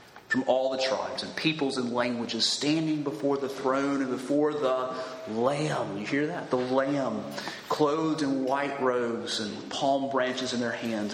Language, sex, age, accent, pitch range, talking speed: English, male, 30-49, American, 130-185 Hz, 165 wpm